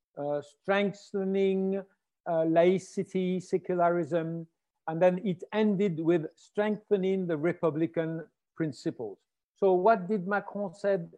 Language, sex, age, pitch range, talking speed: English, male, 60-79, 170-205 Hz, 100 wpm